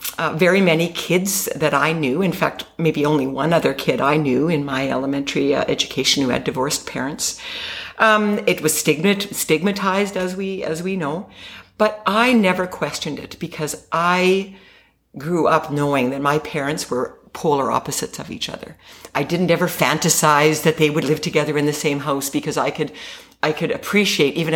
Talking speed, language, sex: 185 wpm, English, female